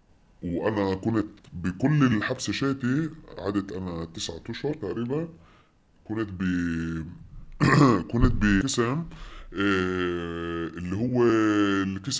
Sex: female